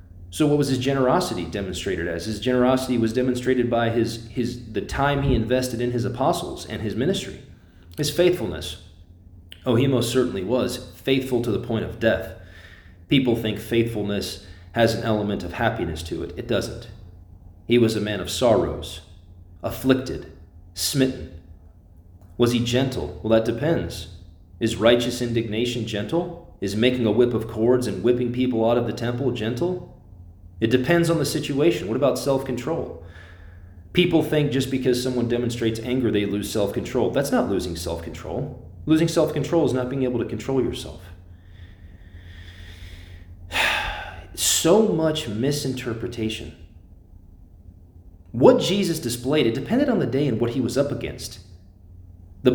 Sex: male